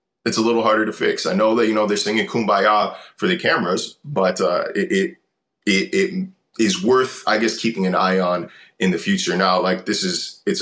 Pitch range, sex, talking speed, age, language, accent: 95-135 Hz, male, 215 wpm, 20-39, English, American